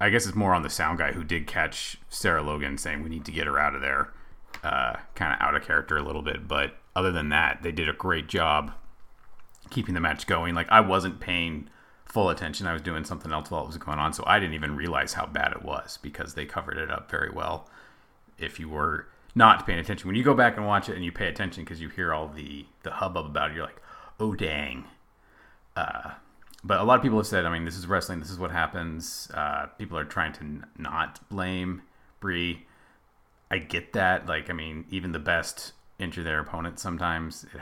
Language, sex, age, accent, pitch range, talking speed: English, male, 30-49, American, 75-95 Hz, 230 wpm